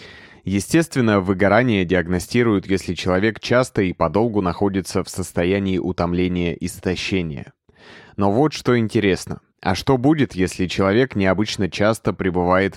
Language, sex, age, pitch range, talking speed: Russian, male, 20-39, 90-105 Hz, 115 wpm